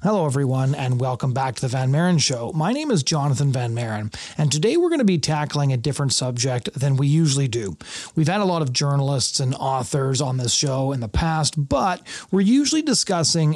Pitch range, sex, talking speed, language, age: 135-165 Hz, male, 210 wpm, English, 30-49